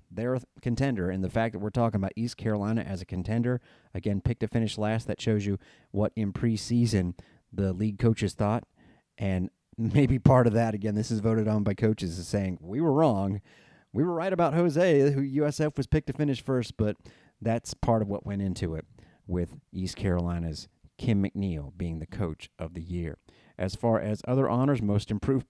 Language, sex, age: English, male, 40-59